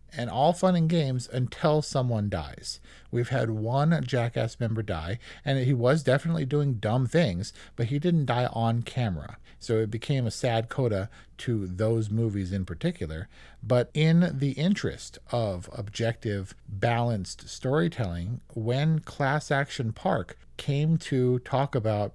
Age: 50-69